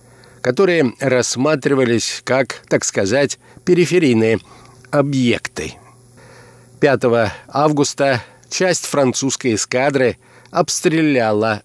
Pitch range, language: 120-145 Hz, Russian